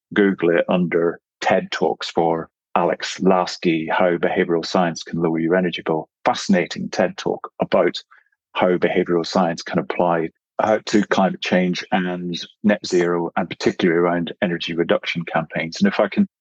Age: 40-59